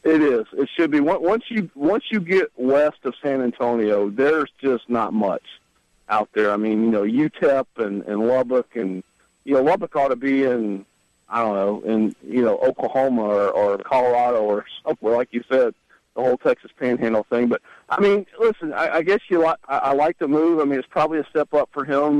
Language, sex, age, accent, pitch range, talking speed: English, male, 50-69, American, 120-155 Hz, 210 wpm